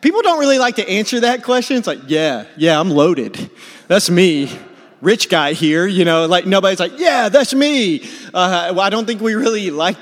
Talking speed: 210 wpm